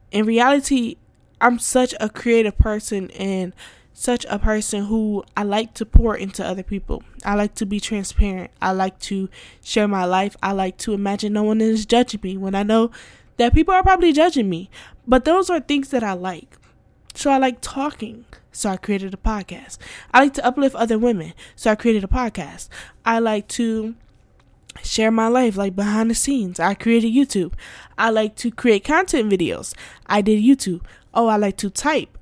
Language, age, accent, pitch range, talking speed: English, 10-29, American, 200-255 Hz, 190 wpm